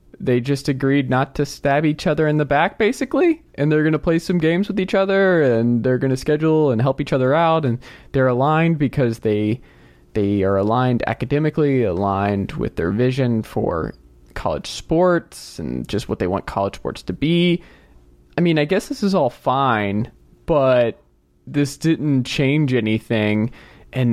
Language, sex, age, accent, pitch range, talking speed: English, male, 20-39, American, 110-145 Hz, 170 wpm